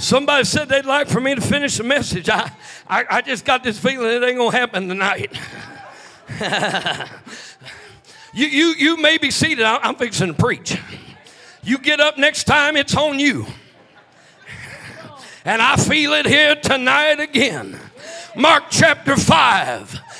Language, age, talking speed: English, 50-69, 150 wpm